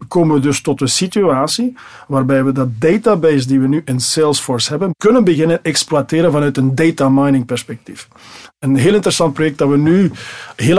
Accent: Dutch